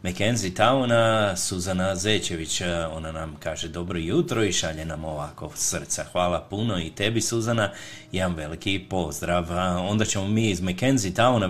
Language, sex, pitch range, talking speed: Croatian, male, 85-100 Hz, 145 wpm